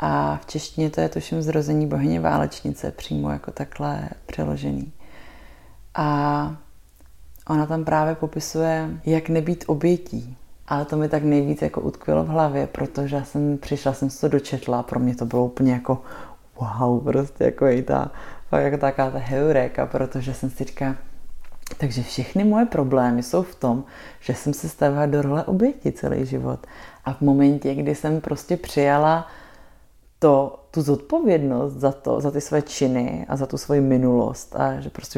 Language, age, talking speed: Czech, 30-49, 160 wpm